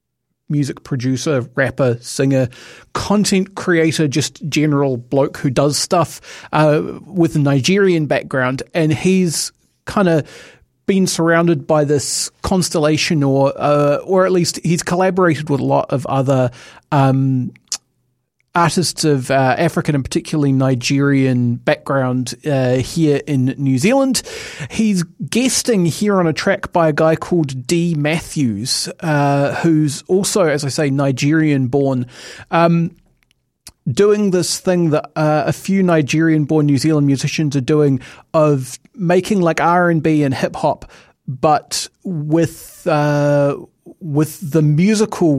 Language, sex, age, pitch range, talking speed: English, male, 40-59, 130-170 Hz, 130 wpm